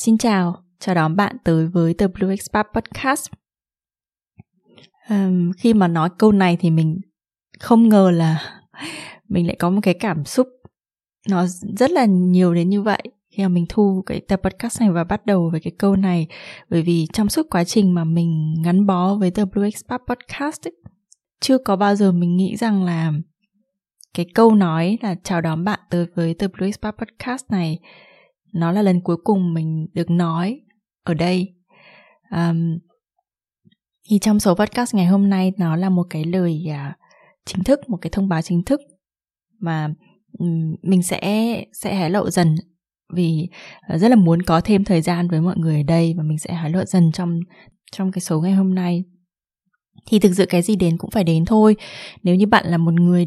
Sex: female